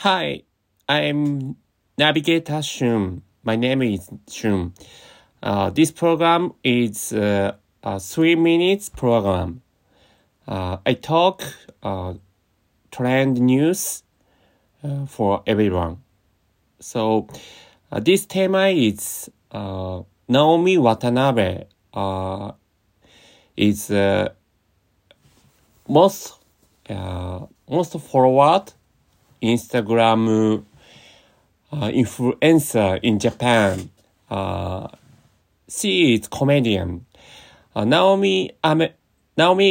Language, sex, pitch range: Japanese, male, 100-140 Hz